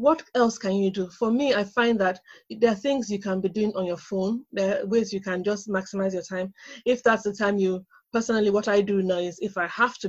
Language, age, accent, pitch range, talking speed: English, 20-39, Nigerian, 190-220 Hz, 260 wpm